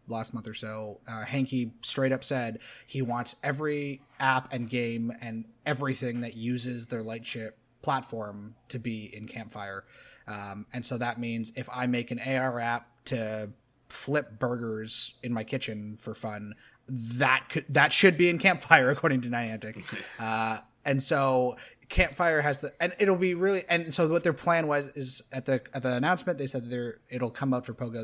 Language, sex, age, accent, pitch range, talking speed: English, male, 20-39, American, 110-135 Hz, 180 wpm